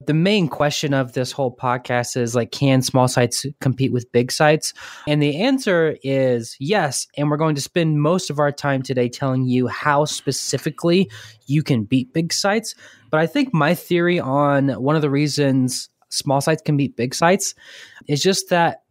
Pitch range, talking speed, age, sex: 130-160 Hz, 185 wpm, 20-39, male